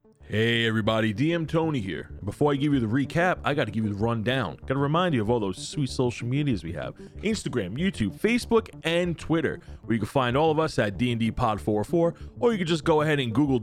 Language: English